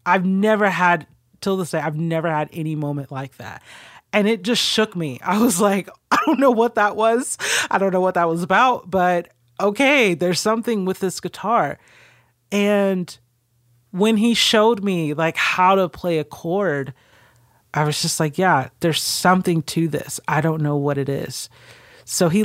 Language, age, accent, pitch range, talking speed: English, 30-49, American, 155-205 Hz, 185 wpm